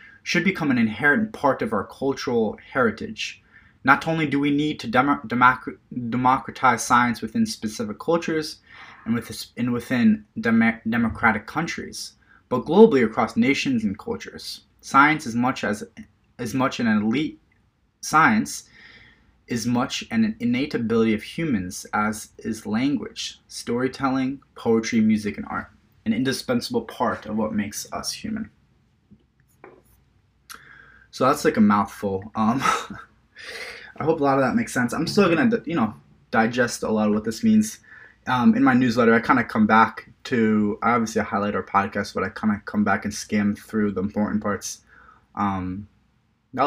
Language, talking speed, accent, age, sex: English, 150 wpm, American, 20-39, male